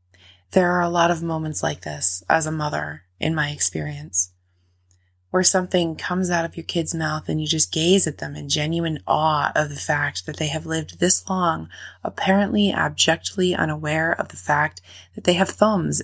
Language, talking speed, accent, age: English, 185 wpm, American, 20-39